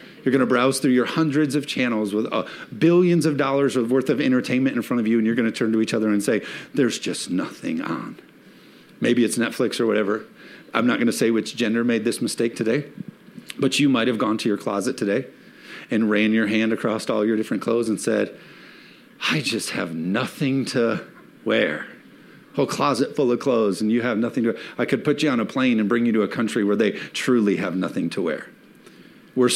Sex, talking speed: male, 220 wpm